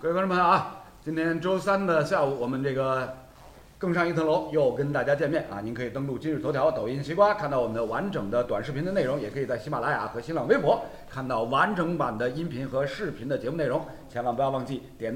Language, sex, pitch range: Chinese, male, 130-195 Hz